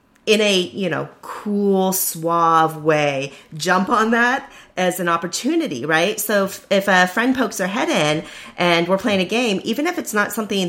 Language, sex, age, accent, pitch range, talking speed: English, female, 30-49, American, 150-200 Hz, 185 wpm